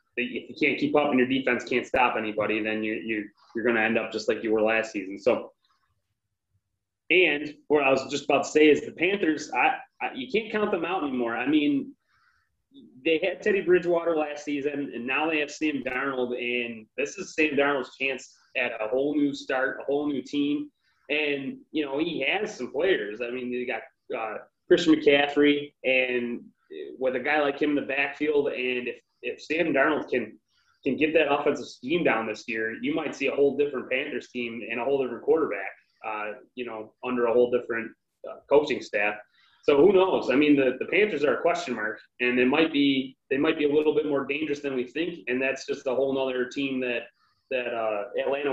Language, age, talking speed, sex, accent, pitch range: English, 20-39, 215 wpm, male, American, 120-150 Hz